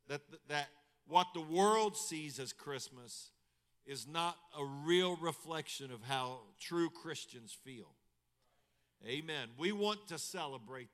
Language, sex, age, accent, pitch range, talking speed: English, male, 50-69, American, 145-185 Hz, 120 wpm